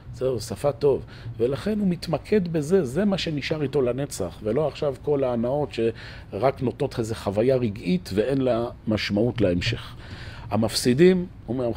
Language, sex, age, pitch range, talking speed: Hebrew, male, 40-59, 100-140 Hz, 145 wpm